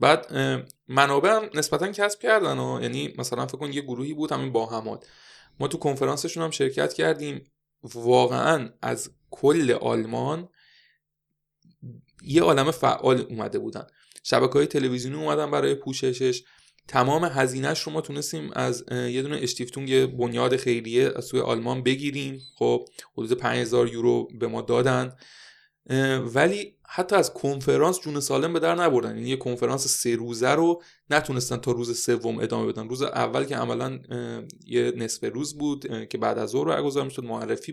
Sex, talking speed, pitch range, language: male, 155 wpm, 125-155 Hz, Persian